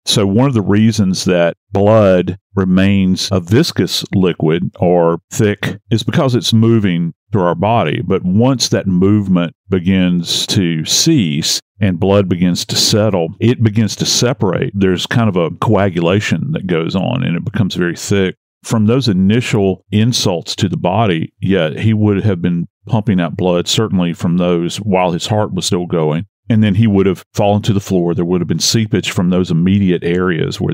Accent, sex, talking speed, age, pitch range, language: American, male, 180 wpm, 50-69, 90-110 Hz, English